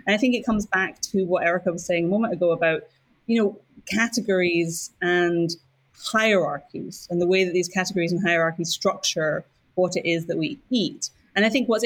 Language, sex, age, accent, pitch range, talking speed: English, female, 30-49, British, 165-195 Hz, 190 wpm